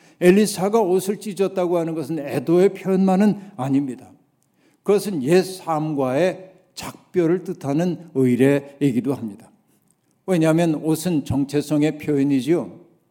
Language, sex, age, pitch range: Korean, male, 60-79, 150-190 Hz